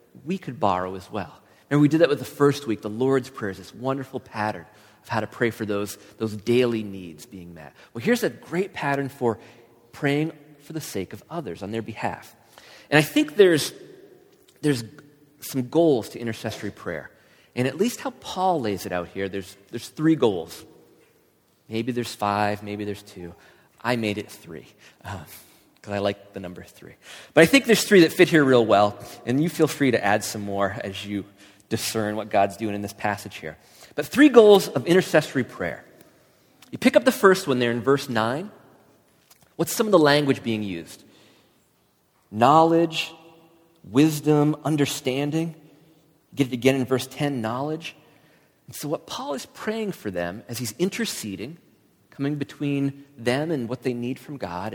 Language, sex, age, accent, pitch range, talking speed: English, male, 30-49, American, 105-155 Hz, 185 wpm